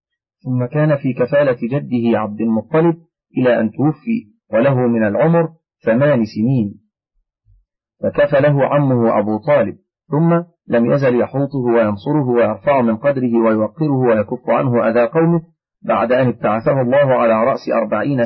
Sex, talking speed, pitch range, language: male, 130 wpm, 115-150 Hz, Arabic